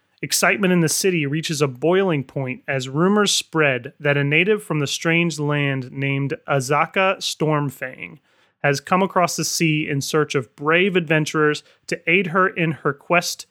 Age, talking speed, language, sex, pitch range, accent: 30-49, 165 wpm, English, male, 140-170 Hz, American